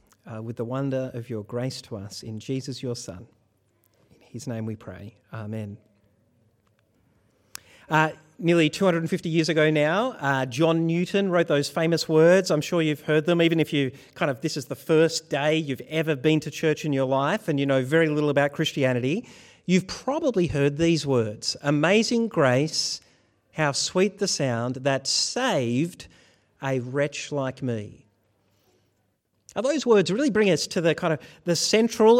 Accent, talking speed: Australian, 170 wpm